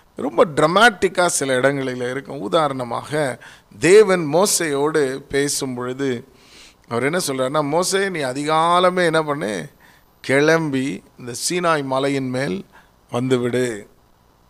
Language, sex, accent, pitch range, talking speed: Tamil, male, native, 135-170 Hz, 100 wpm